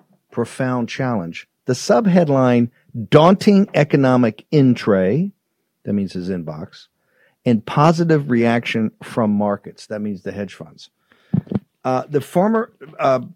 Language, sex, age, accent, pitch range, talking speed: English, male, 50-69, American, 105-135 Hz, 115 wpm